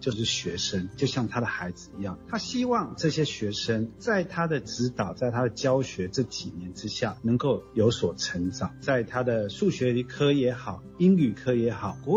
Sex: male